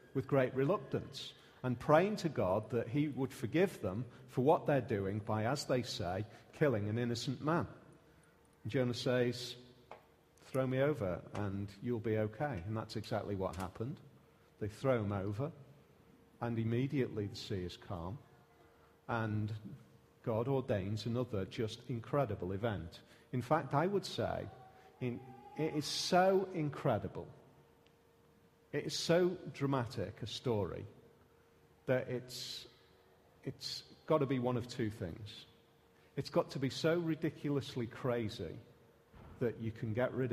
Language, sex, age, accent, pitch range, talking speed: English, male, 40-59, British, 110-140 Hz, 135 wpm